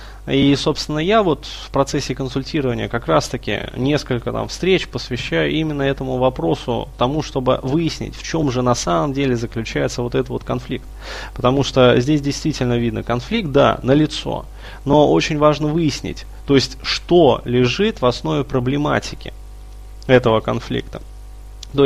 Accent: native